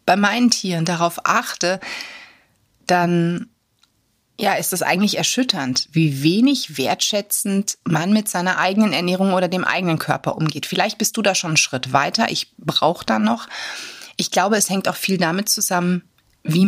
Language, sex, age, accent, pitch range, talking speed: German, female, 30-49, German, 165-195 Hz, 160 wpm